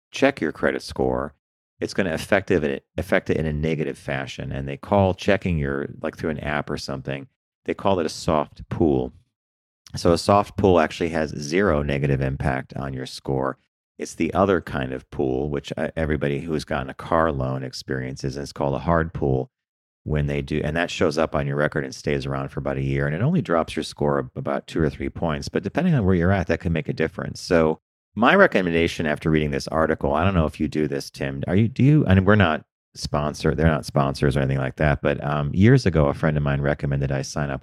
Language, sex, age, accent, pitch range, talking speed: English, male, 40-59, American, 70-85 Hz, 230 wpm